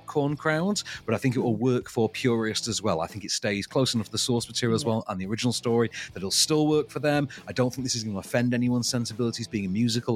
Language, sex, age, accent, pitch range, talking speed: English, male, 40-59, British, 115-180 Hz, 280 wpm